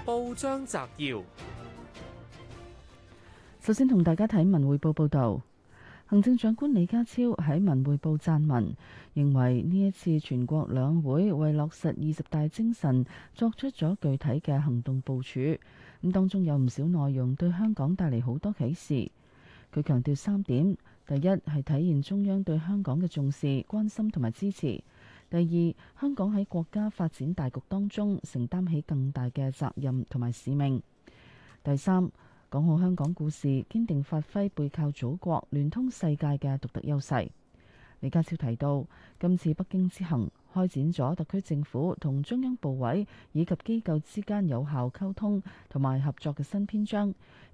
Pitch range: 135-190 Hz